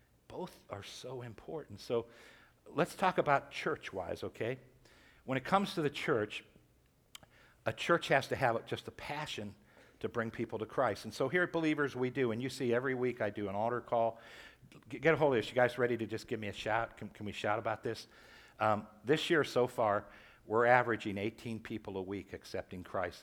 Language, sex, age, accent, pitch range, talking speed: English, male, 60-79, American, 115-165 Hz, 205 wpm